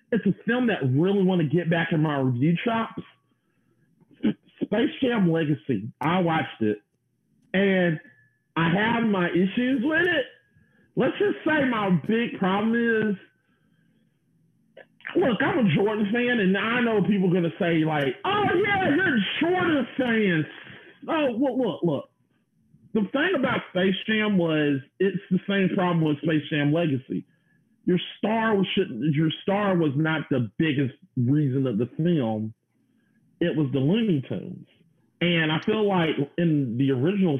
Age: 40-59